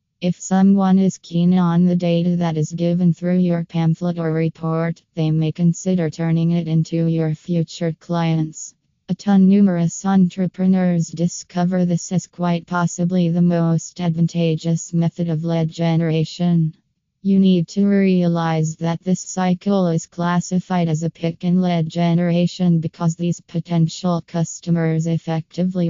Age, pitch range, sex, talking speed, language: 20-39, 165-180 Hz, female, 140 wpm, English